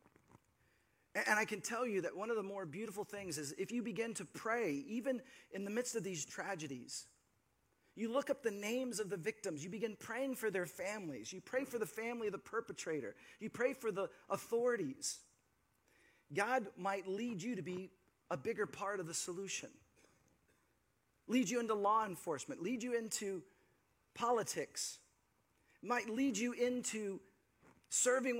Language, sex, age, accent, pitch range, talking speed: English, male, 40-59, American, 180-235 Hz, 165 wpm